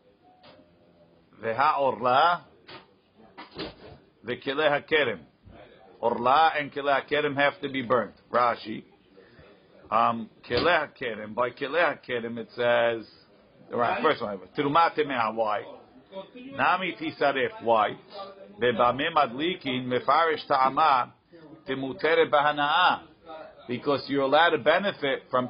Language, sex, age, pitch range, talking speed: English, male, 50-69, 125-155 Hz, 100 wpm